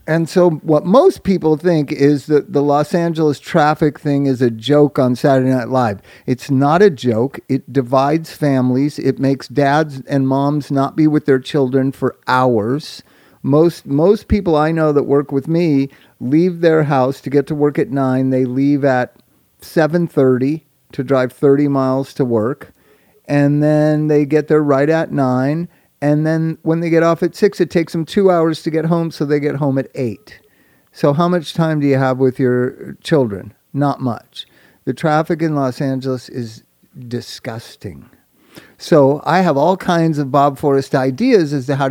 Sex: male